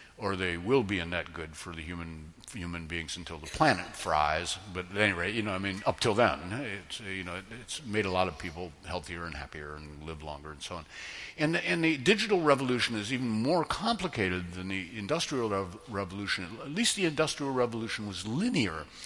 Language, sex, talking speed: English, male, 215 wpm